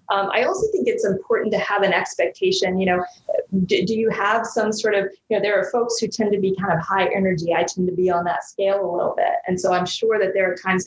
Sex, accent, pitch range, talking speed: female, American, 180-225 Hz, 275 wpm